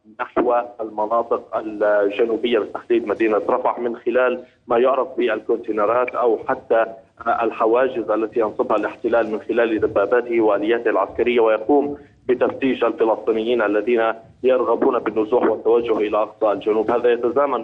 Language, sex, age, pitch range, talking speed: Arabic, male, 30-49, 115-170 Hz, 115 wpm